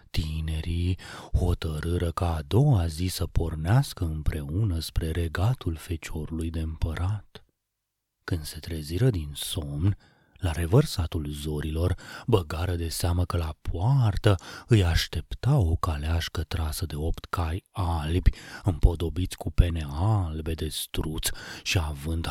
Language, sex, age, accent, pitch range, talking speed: Romanian, male, 30-49, native, 80-100 Hz, 120 wpm